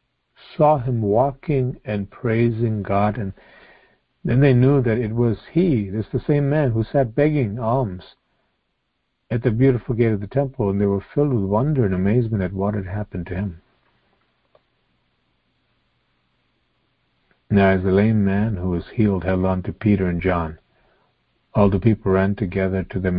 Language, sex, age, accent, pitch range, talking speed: English, male, 50-69, American, 95-115 Hz, 165 wpm